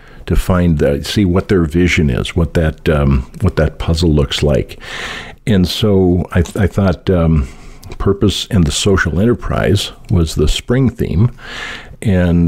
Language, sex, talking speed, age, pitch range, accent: English, male, 155 wpm, 50-69, 80-95 Hz, American